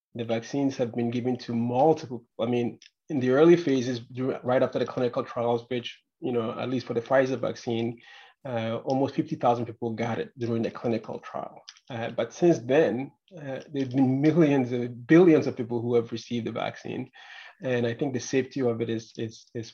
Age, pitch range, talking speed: 30-49, 115-135 Hz, 200 wpm